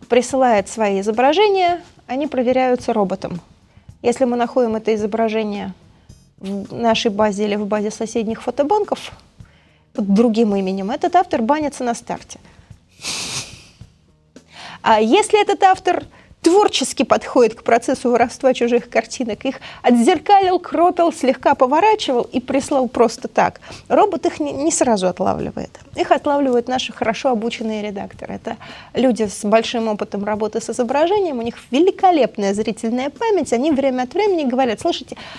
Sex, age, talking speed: female, 30-49, 130 wpm